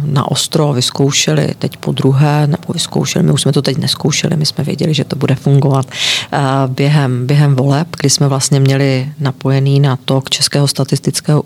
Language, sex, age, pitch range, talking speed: Czech, female, 40-59, 130-145 Hz, 180 wpm